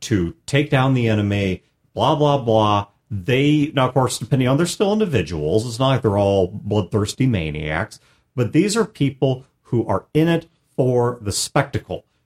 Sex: male